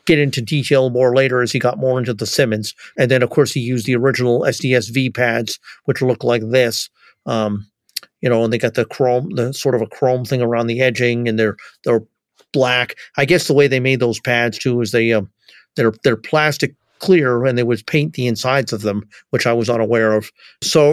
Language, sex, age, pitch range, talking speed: English, male, 40-59, 120-135 Hz, 220 wpm